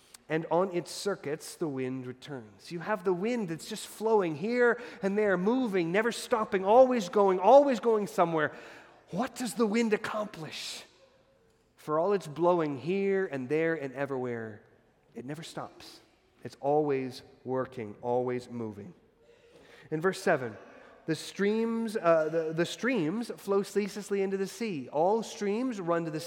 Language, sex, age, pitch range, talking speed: English, male, 30-49, 135-200 Hz, 140 wpm